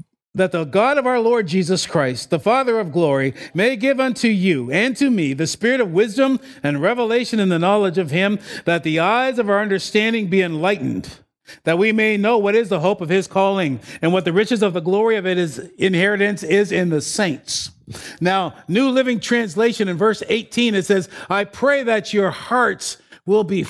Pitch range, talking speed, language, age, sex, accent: 185-240 Hz, 200 wpm, English, 50-69, male, American